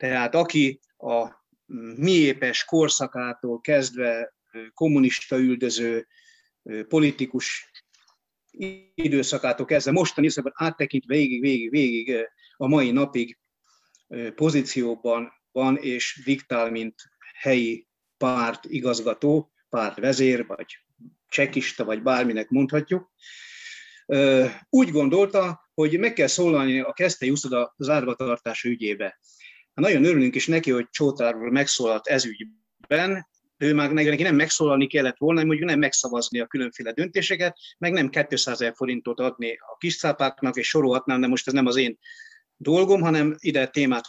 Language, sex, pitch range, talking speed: Hungarian, male, 125-155 Hz, 120 wpm